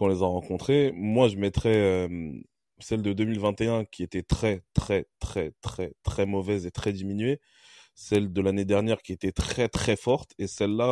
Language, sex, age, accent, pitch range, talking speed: French, male, 20-39, French, 95-105 Hz, 175 wpm